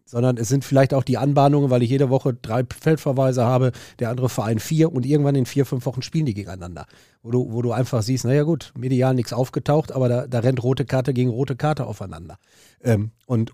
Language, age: German, 40-59